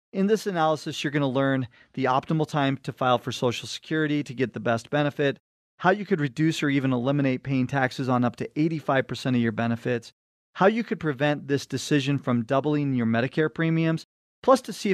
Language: English